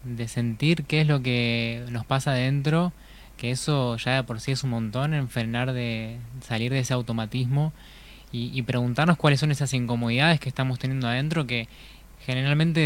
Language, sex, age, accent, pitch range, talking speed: Spanish, male, 20-39, Argentinian, 120-150 Hz, 175 wpm